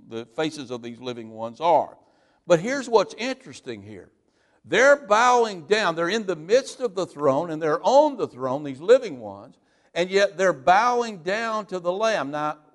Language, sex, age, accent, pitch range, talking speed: English, male, 60-79, American, 150-215 Hz, 185 wpm